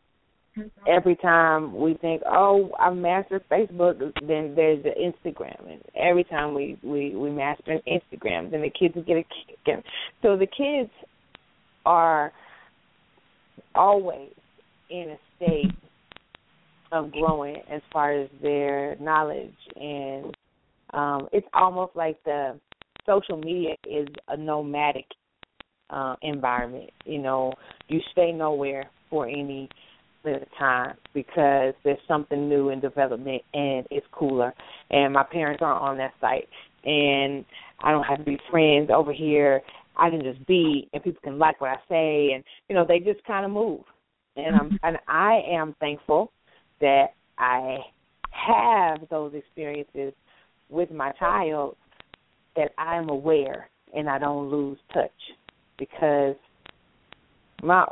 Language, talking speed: English, 140 wpm